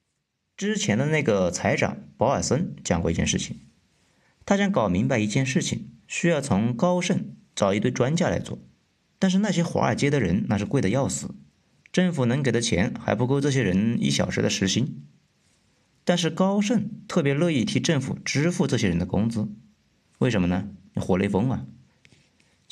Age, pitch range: 50-69, 110-180 Hz